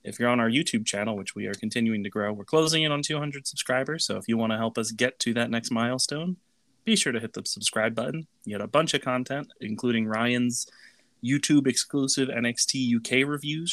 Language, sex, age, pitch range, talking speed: English, male, 30-49, 115-145 Hz, 215 wpm